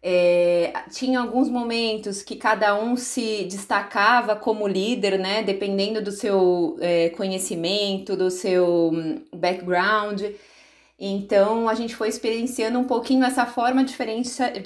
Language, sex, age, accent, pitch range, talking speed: Portuguese, female, 20-39, Brazilian, 195-245 Hz, 115 wpm